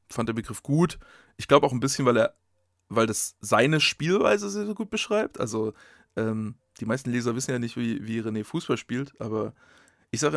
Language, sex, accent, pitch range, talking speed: German, male, German, 110-135 Hz, 195 wpm